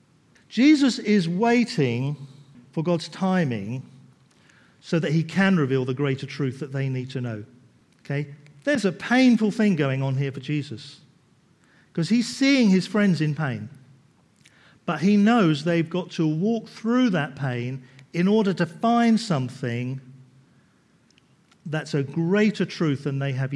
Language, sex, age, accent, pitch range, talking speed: English, male, 50-69, British, 140-205 Hz, 150 wpm